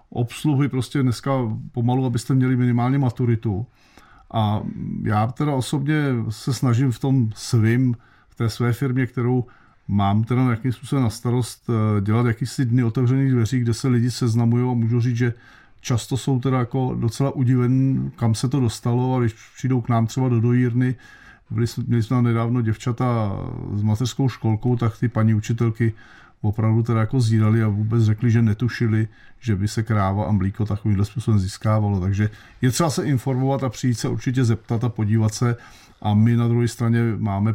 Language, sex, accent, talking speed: Czech, male, native, 175 wpm